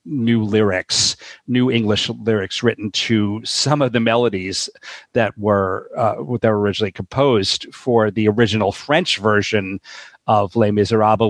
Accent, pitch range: American, 105-125 Hz